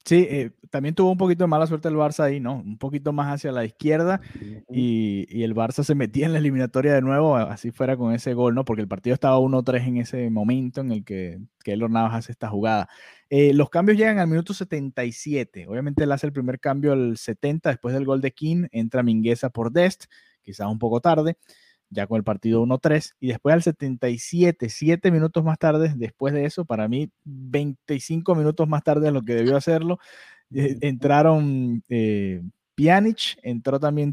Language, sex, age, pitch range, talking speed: Spanish, male, 30-49, 125-160 Hz, 200 wpm